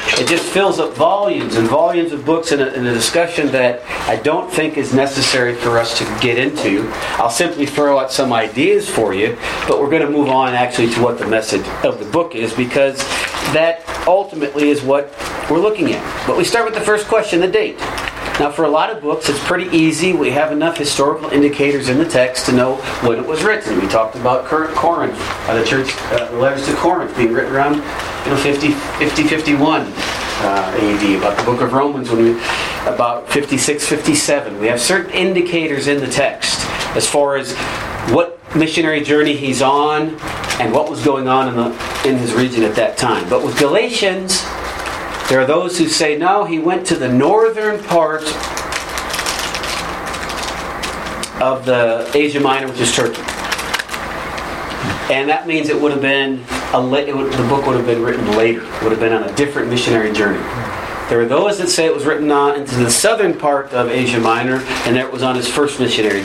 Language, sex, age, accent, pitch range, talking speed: English, male, 40-59, American, 125-155 Hz, 195 wpm